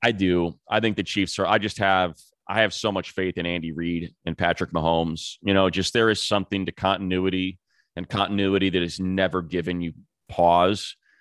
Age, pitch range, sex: 30-49, 80-100 Hz, male